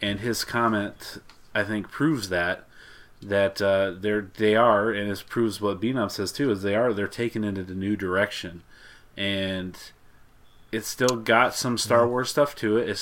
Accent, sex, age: American, male, 30-49